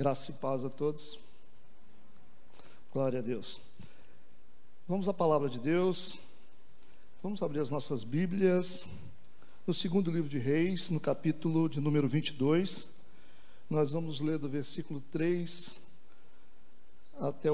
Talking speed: 120 wpm